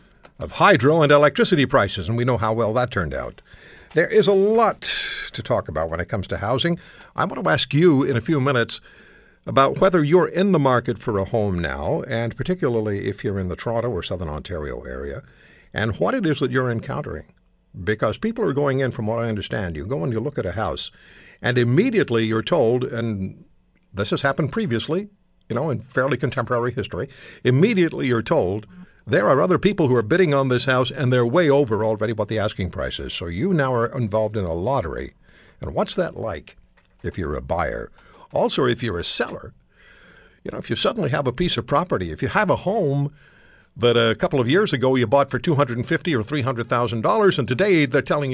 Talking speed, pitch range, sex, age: 215 wpm, 110-150 Hz, male, 60-79